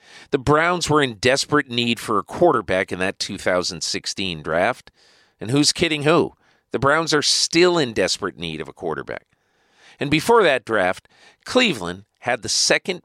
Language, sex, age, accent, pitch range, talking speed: English, male, 50-69, American, 110-150 Hz, 160 wpm